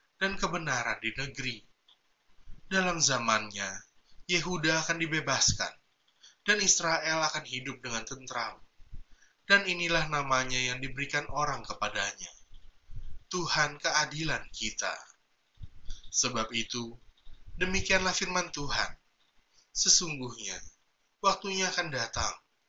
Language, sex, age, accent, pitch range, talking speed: Indonesian, male, 20-39, native, 120-175 Hz, 90 wpm